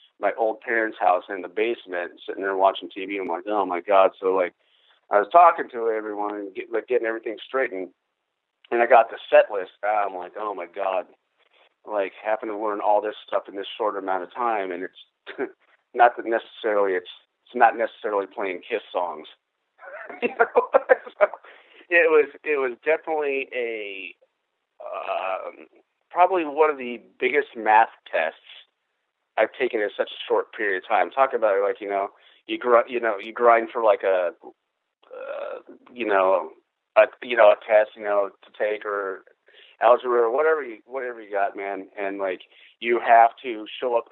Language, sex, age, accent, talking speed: English, male, 50-69, American, 180 wpm